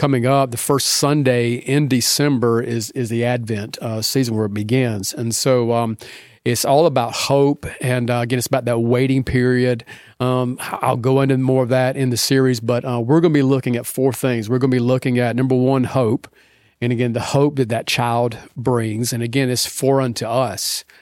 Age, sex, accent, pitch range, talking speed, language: 40-59, male, American, 120-140 Hz, 210 wpm, English